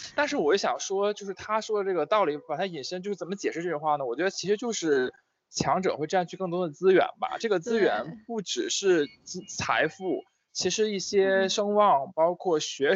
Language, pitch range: Chinese, 145-205 Hz